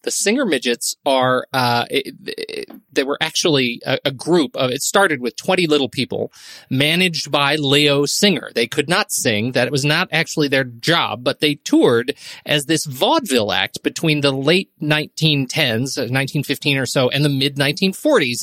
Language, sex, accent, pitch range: English, male, American, 140-190 Hz